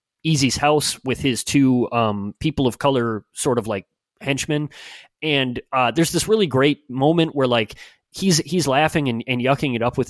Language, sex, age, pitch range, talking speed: English, male, 30-49, 115-145 Hz, 185 wpm